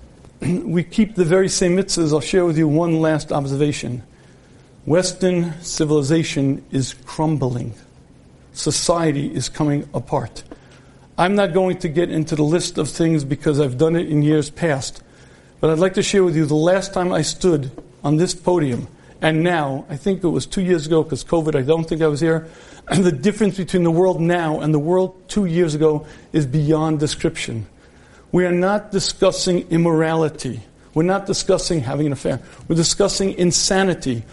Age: 50-69